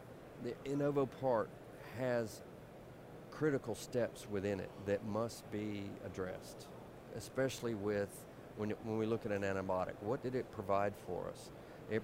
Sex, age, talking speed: male, 50-69, 140 wpm